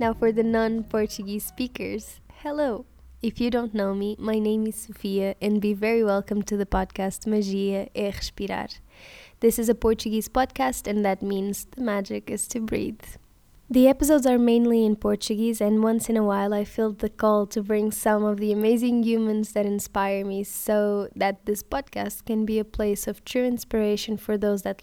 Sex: female